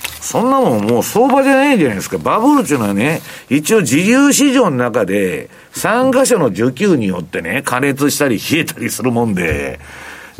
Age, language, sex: 50-69, Japanese, male